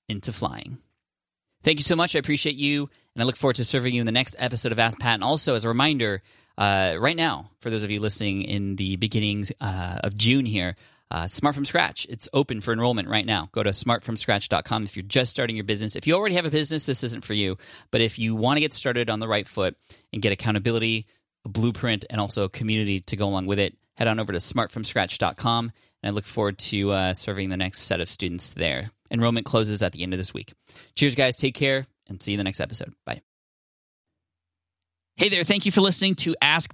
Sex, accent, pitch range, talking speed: male, American, 105-145 Hz, 235 wpm